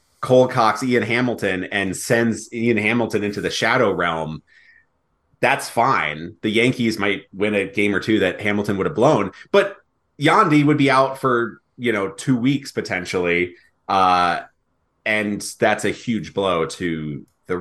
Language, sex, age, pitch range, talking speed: English, male, 30-49, 105-145 Hz, 155 wpm